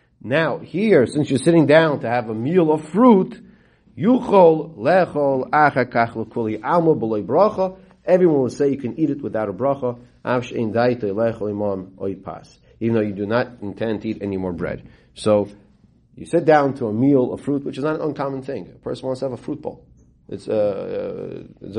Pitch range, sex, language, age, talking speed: 110-155 Hz, male, English, 40-59, 160 wpm